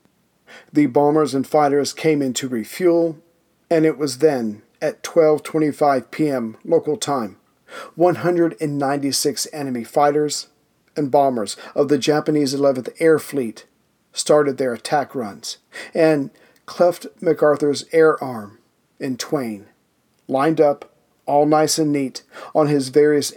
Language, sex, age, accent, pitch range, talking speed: English, male, 40-59, American, 135-160 Hz, 125 wpm